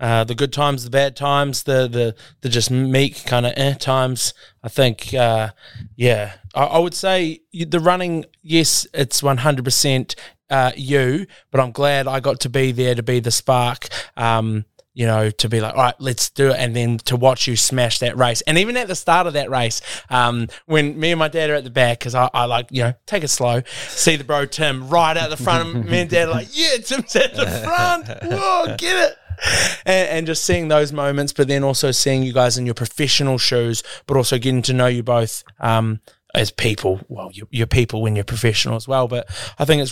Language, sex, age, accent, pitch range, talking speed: English, male, 20-39, Australian, 120-145 Hz, 225 wpm